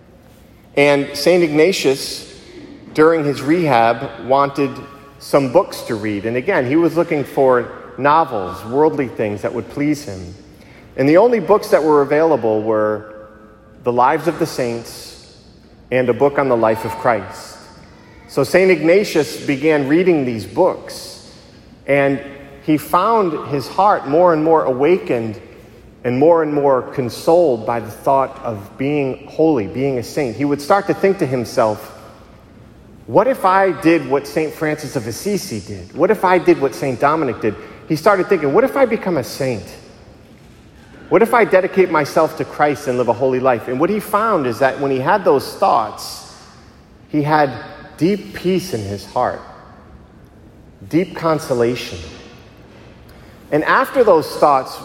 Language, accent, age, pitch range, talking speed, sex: English, American, 40-59, 120-165 Hz, 160 wpm, male